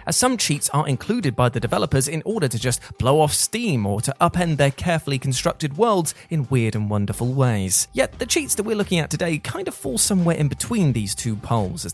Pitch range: 120-170 Hz